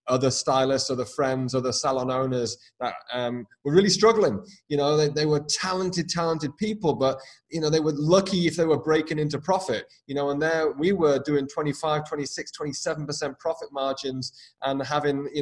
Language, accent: English, British